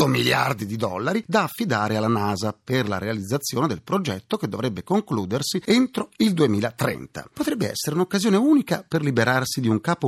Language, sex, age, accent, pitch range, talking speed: Italian, male, 40-59, native, 110-185 Hz, 160 wpm